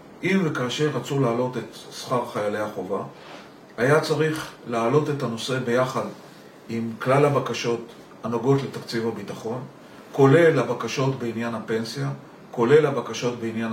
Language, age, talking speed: Hebrew, 40-59, 120 wpm